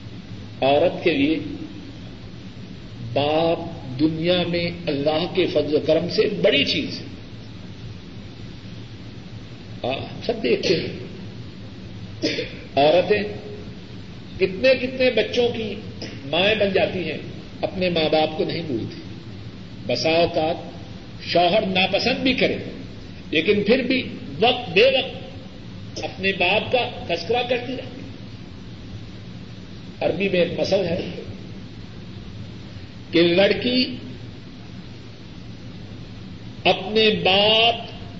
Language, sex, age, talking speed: Urdu, male, 50-69, 95 wpm